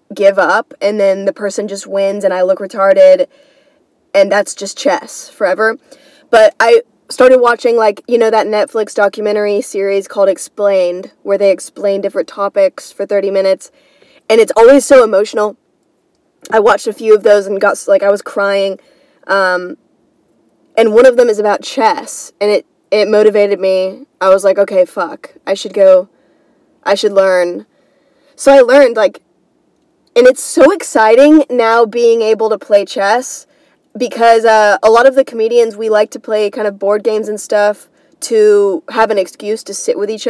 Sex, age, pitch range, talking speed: female, 20-39, 200-280 Hz, 175 wpm